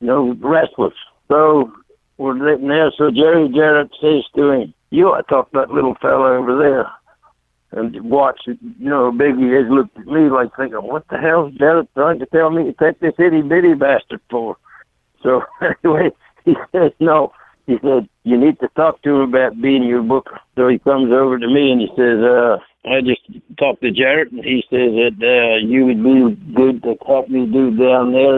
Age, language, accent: 60-79, English, American